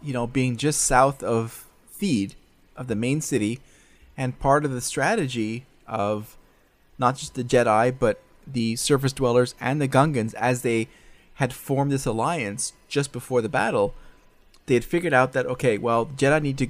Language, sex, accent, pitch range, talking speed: English, male, American, 115-135 Hz, 175 wpm